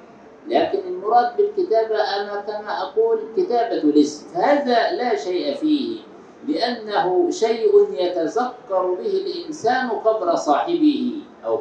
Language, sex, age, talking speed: Arabic, male, 50-69, 110 wpm